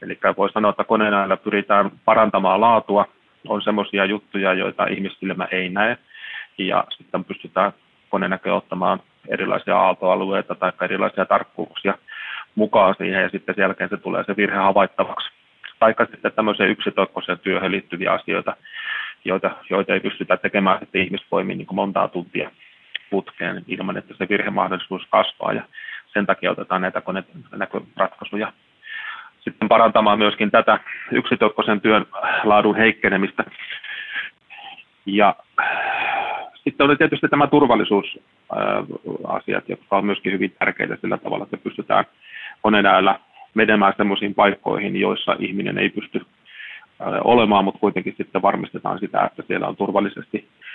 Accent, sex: native, male